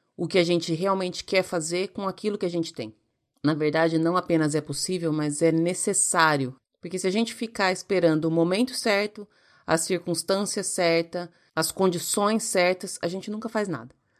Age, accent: 30-49, Brazilian